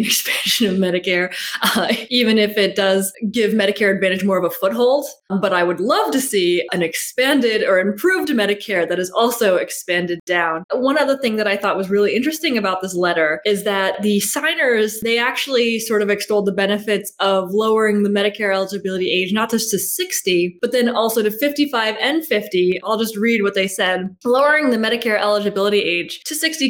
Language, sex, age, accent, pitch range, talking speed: English, female, 20-39, American, 190-235 Hz, 190 wpm